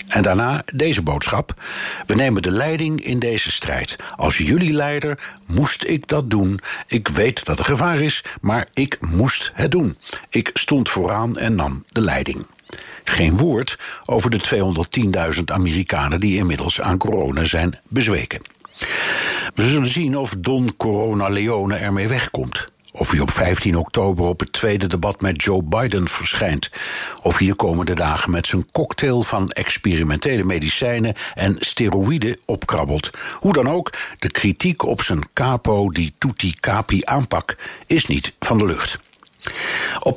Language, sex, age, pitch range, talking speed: Dutch, male, 60-79, 90-130 Hz, 150 wpm